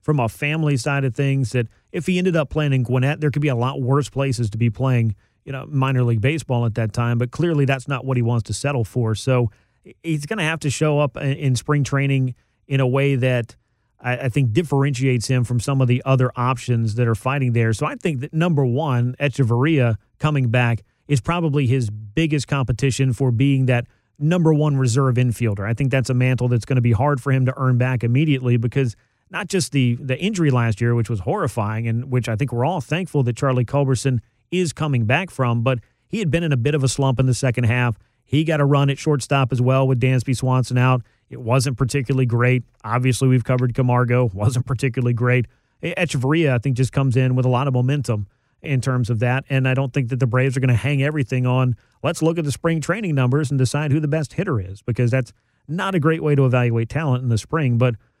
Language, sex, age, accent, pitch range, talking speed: English, male, 40-59, American, 120-140 Hz, 230 wpm